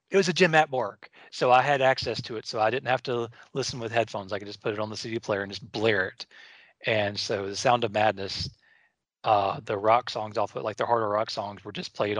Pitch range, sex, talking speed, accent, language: 105-130 Hz, male, 260 wpm, American, English